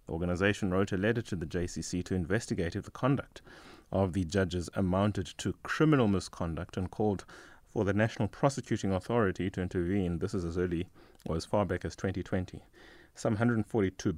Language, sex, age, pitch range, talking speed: English, male, 30-49, 85-100 Hz, 170 wpm